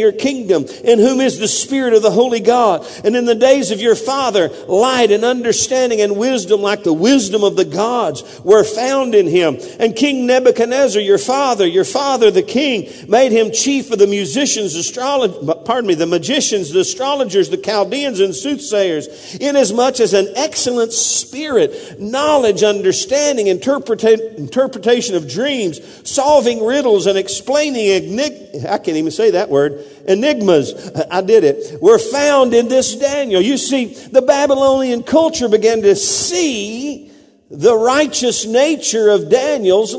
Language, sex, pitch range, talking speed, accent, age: English, male, 205-290 Hz, 155 wpm, American, 50-69